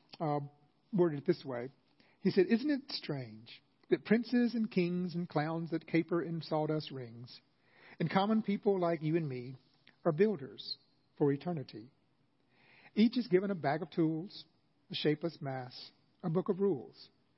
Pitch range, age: 140-180 Hz, 50-69